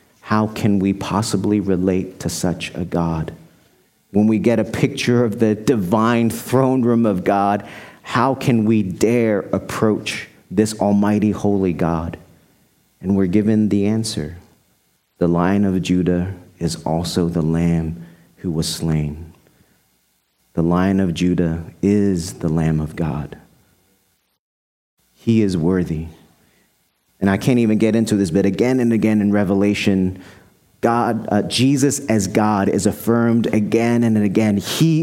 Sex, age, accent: male, 40-59, American